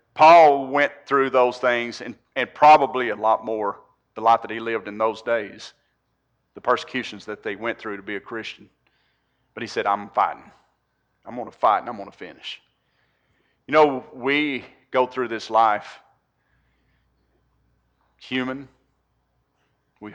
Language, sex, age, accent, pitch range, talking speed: English, male, 40-59, American, 110-130 Hz, 155 wpm